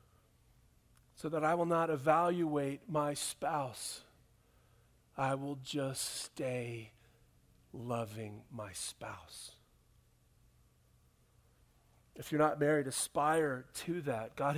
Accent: American